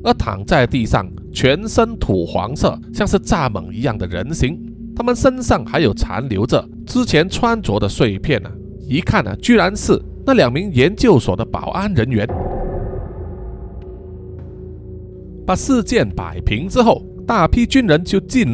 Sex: male